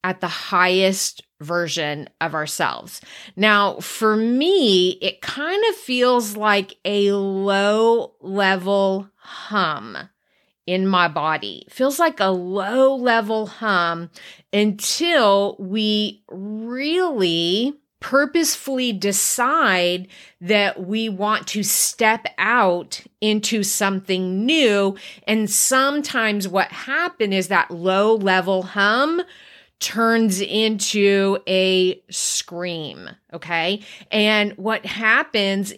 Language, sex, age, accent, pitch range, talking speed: English, female, 30-49, American, 185-220 Hz, 100 wpm